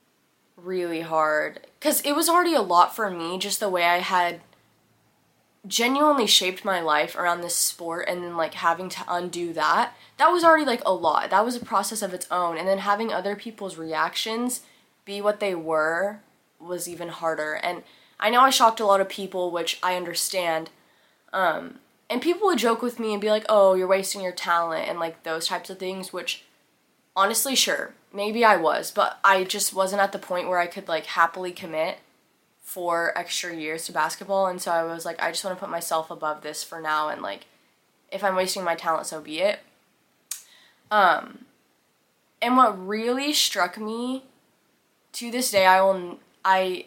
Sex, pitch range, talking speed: female, 170-215 Hz, 190 wpm